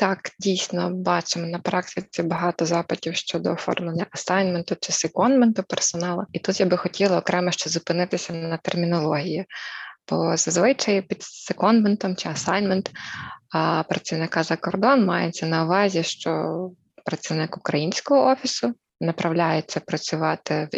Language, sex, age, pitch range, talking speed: Ukrainian, female, 20-39, 170-195 Hz, 120 wpm